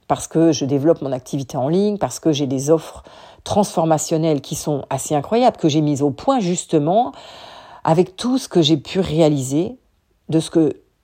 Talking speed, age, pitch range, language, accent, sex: 185 wpm, 50-69, 150-185 Hz, French, French, female